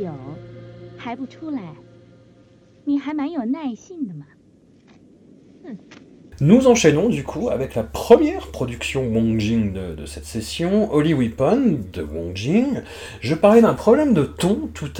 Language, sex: French, male